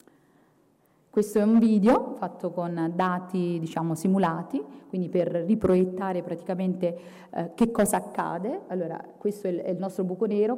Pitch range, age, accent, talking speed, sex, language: 185-240 Hz, 30-49, native, 140 wpm, female, Italian